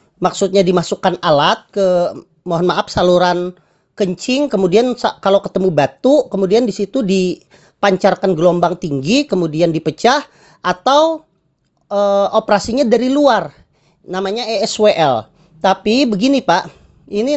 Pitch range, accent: 180-225 Hz, native